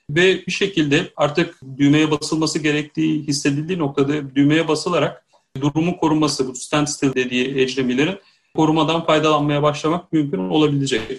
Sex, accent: male, native